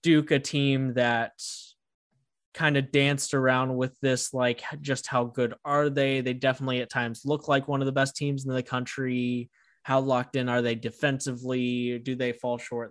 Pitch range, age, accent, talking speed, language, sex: 120-140 Hz, 20-39, American, 185 wpm, English, male